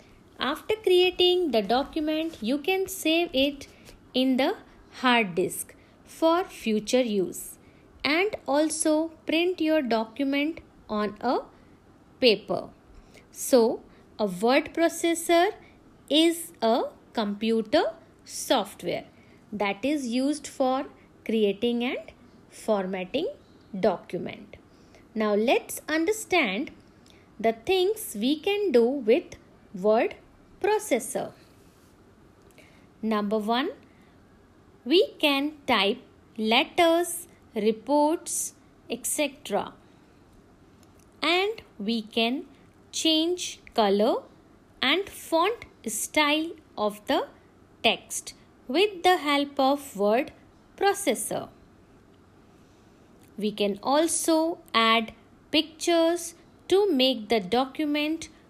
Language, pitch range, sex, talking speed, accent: English, 230-335 Hz, female, 85 wpm, Indian